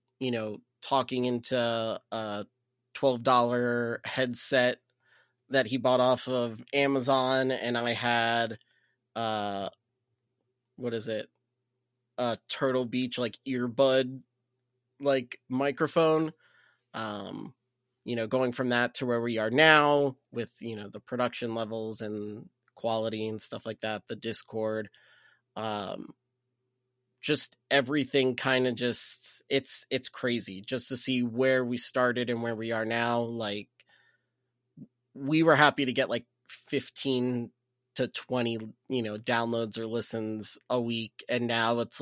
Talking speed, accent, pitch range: 130 wpm, American, 115-130 Hz